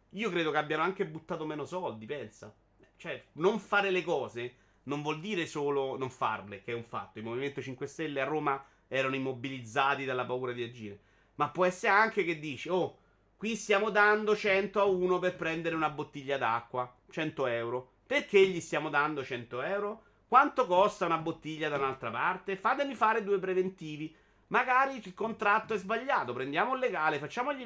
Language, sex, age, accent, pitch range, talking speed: Italian, male, 30-49, native, 125-180 Hz, 180 wpm